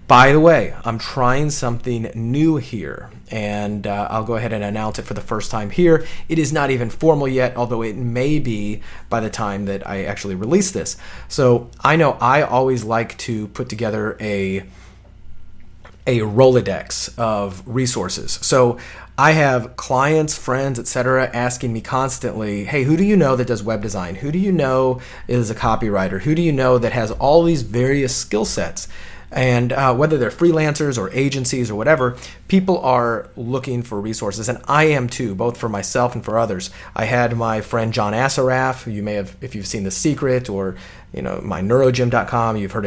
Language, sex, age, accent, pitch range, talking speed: English, male, 30-49, American, 105-130 Hz, 190 wpm